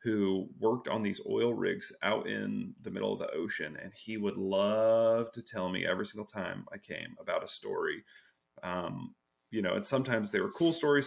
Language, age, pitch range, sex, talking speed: English, 30-49, 105-135 Hz, male, 200 wpm